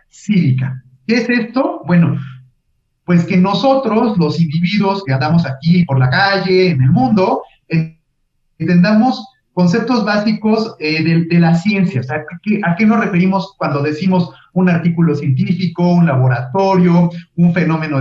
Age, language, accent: 40-59, Spanish, Mexican